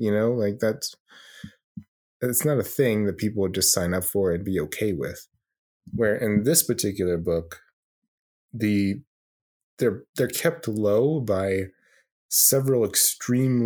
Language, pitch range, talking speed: English, 95-115 Hz, 140 wpm